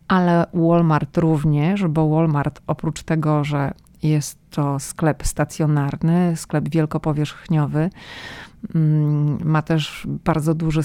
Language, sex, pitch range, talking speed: Polish, female, 150-170 Hz, 95 wpm